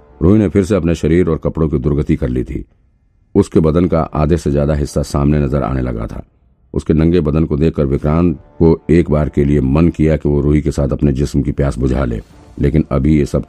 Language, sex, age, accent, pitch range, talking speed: Hindi, male, 50-69, native, 70-80 Hz, 195 wpm